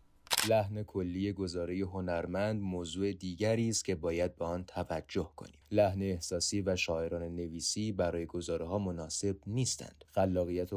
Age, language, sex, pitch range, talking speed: 30-49, Persian, male, 85-100 Hz, 140 wpm